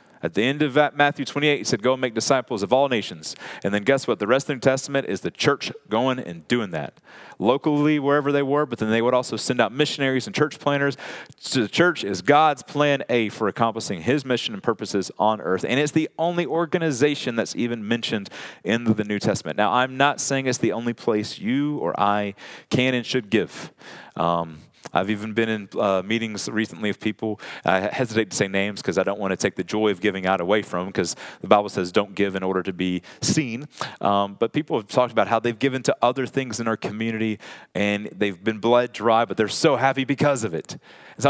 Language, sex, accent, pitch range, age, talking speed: English, male, American, 105-140 Hz, 30-49, 230 wpm